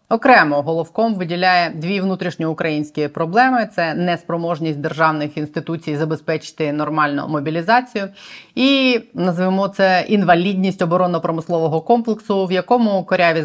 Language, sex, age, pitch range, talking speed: Ukrainian, female, 20-39, 170-205 Hz, 105 wpm